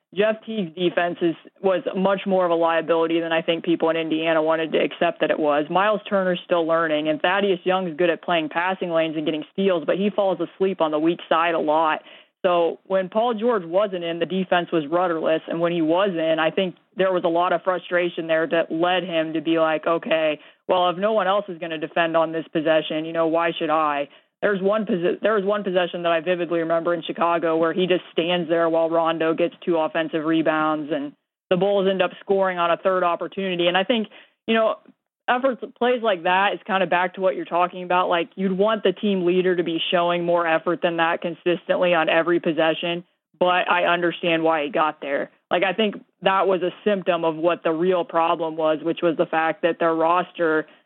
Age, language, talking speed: 20-39, English, 225 wpm